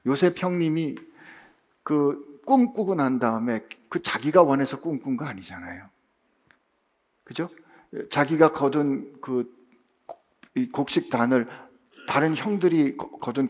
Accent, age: native, 50-69